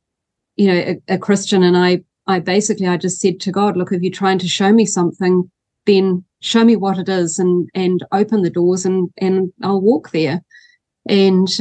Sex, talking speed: female, 200 wpm